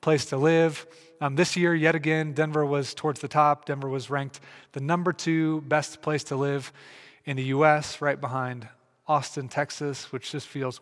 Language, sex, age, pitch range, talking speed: English, male, 30-49, 135-155 Hz, 185 wpm